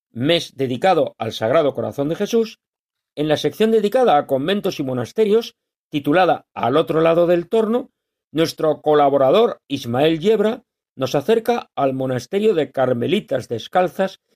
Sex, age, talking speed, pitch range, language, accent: male, 40-59, 135 wpm, 135-200 Hz, Spanish, Spanish